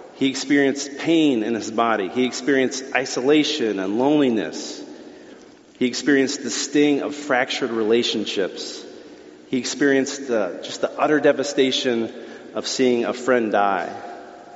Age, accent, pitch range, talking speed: 40-59, American, 115-140 Hz, 120 wpm